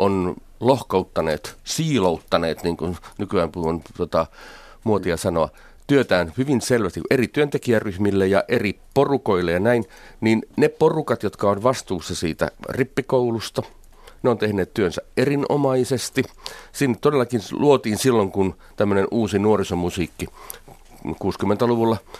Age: 40-59